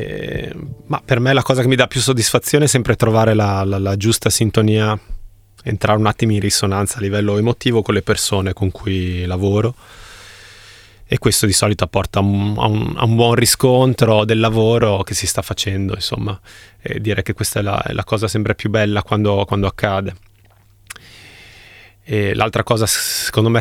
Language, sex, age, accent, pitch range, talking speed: Italian, male, 20-39, native, 100-115 Hz, 170 wpm